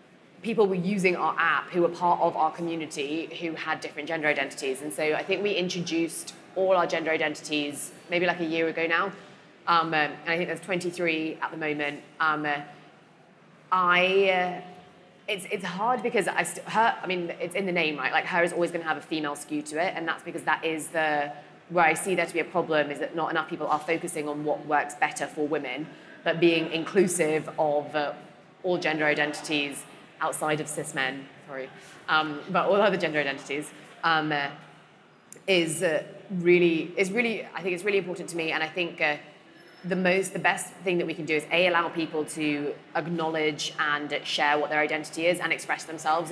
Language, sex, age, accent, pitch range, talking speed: English, female, 20-39, British, 150-180 Hz, 205 wpm